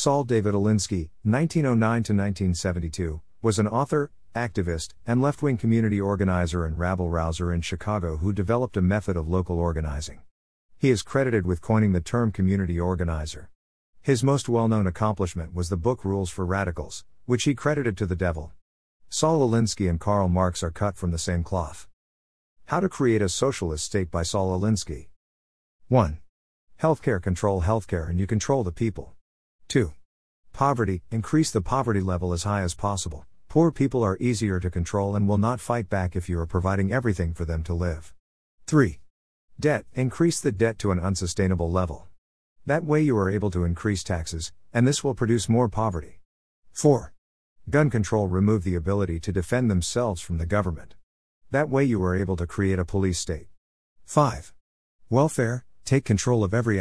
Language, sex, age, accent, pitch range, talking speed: English, male, 50-69, American, 85-115 Hz, 165 wpm